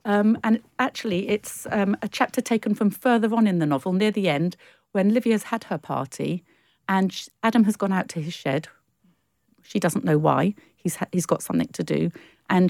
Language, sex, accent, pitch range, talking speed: English, female, British, 165-205 Hz, 205 wpm